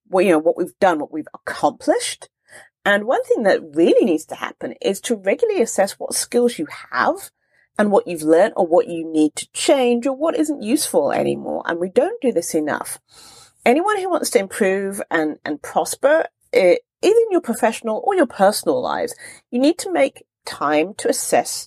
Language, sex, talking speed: English, female, 195 wpm